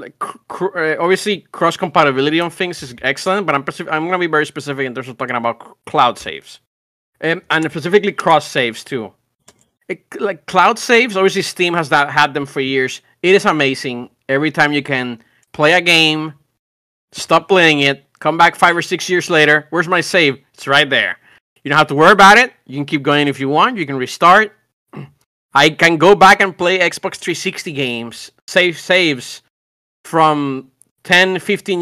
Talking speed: 190 wpm